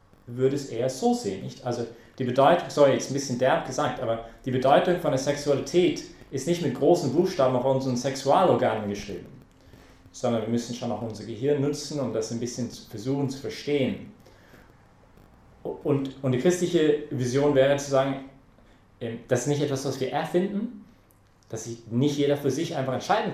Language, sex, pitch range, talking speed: English, male, 120-145 Hz, 175 wpm